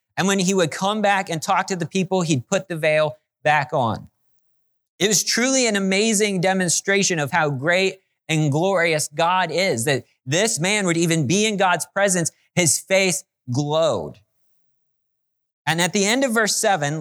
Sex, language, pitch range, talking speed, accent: male, English, 155-195 Hz, 175 wpm, American